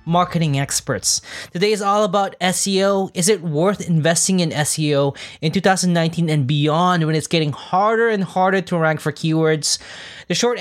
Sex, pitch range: male, 155-195 Hz